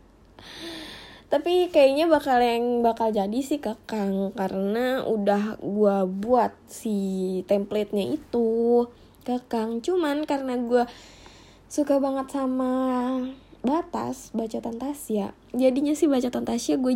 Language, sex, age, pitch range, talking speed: Indonesian, female, 20-39, 215-270 Hz, 105 wpm